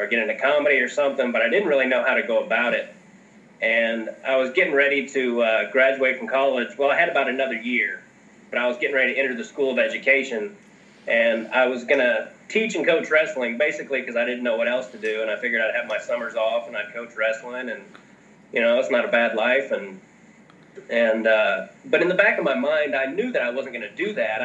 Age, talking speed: 30-49, 240 wpm